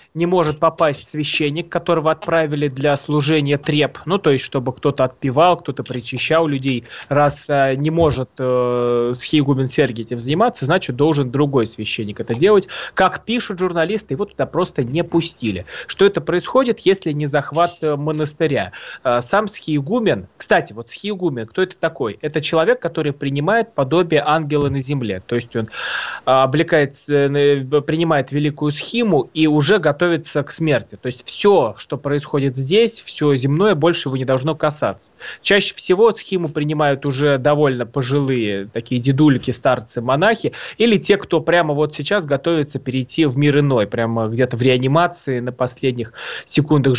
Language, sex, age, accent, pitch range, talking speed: Russian, male, 20-39, native, 130-165 Hz, 150 wpm